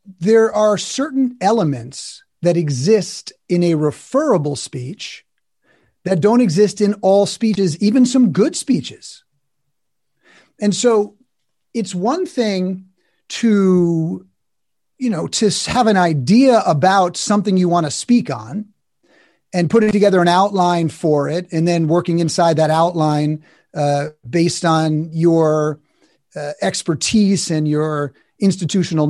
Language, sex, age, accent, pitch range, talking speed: English, male, 40-59, American, 165-220 Hz, 125 wpm